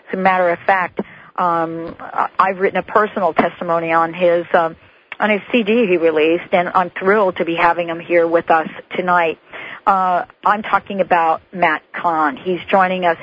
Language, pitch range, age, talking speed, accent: English, 170-205 Hz, 50-69, 175 wpm, American